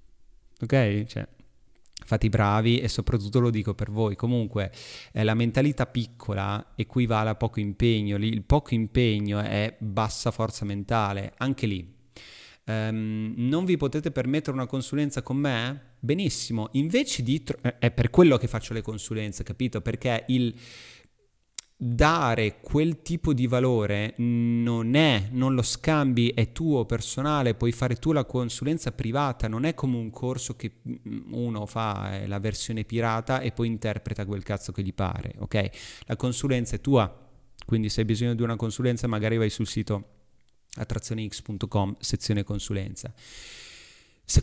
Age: 30-49